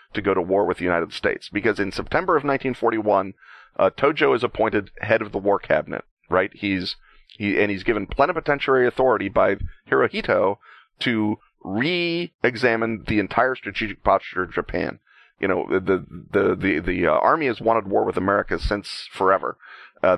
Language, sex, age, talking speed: English, male, 40-59, 170 wpm